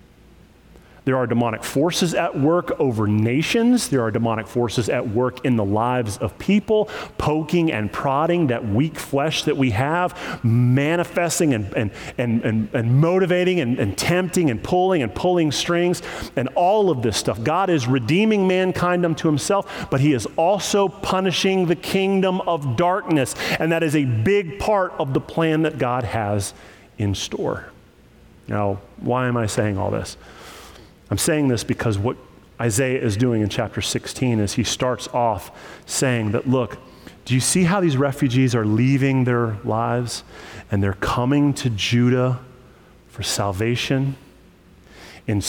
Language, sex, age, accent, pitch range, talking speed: English, male, 40-59, American, 115-165 Hz, 160 wpm